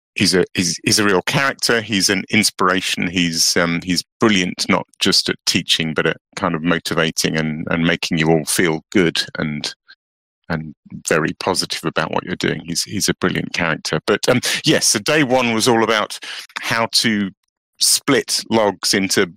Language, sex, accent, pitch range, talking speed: English, male, British, 85-110 Hz, 175 wpm